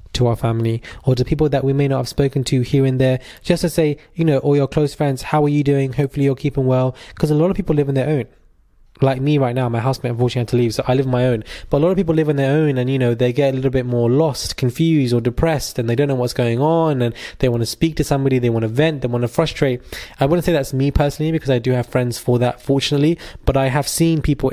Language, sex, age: English, male, 20-39